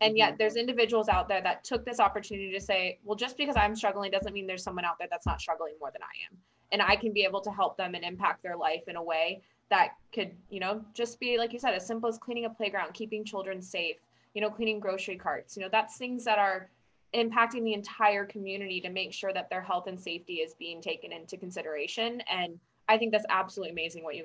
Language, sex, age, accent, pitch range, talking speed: English, female, 20-39, American, 180-225 Hz, 245 wpm